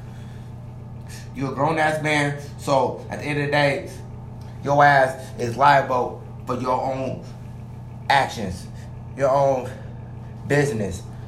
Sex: male